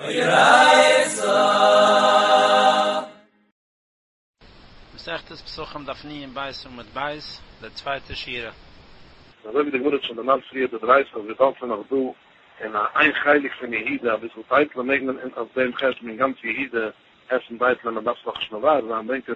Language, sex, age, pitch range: English, male, 60-79, 115-140 Hz